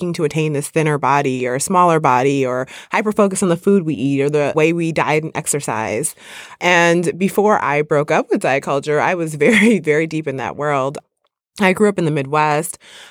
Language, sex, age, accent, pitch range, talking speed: English, female, 20-39, American, 140-175 Hz, 205 wpm